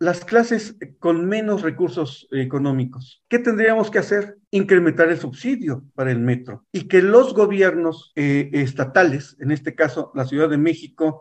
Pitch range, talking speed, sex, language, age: 160-215 Hz, 155 wpm, male, English, 50-69